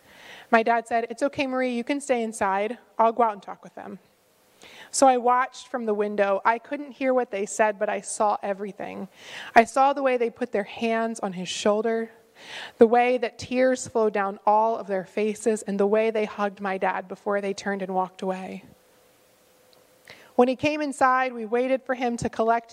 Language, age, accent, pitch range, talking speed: English, 20-39, American, 210-265 Hz, 205 wpm